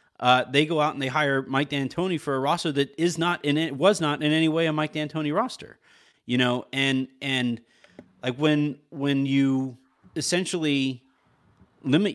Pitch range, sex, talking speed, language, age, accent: 125-155 Hz, male, 180 wpm, English, 30-49, American